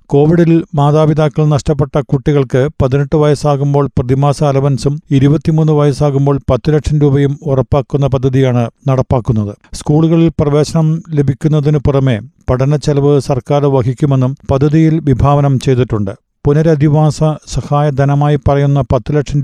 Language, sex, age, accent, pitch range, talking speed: Malayalam, male, 50-69, native, 135-150 Hz, 100 wpm